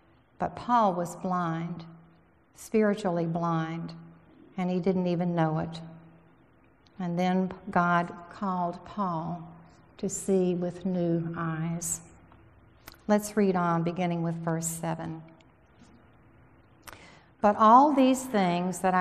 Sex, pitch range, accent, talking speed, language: female, 165-200 Hz, American, 105 wpm, English